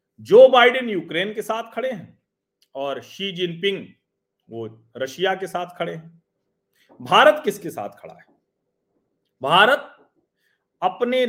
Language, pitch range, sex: Hindi, 155-220 Hz, male